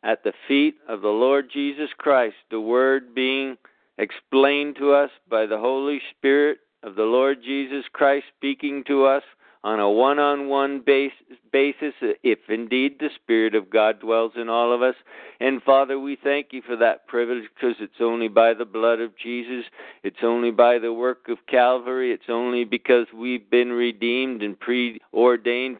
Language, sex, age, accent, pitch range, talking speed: English, male, 50-69, American, 120-135 Hz, 170 wpm